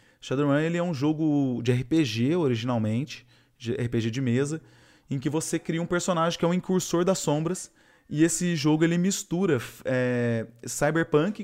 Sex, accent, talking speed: male, Brazilian, 155 wpm